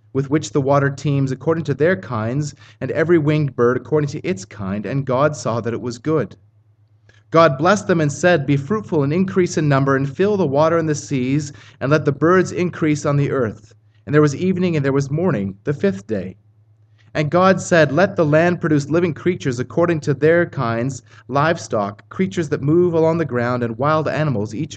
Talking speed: 205 wpm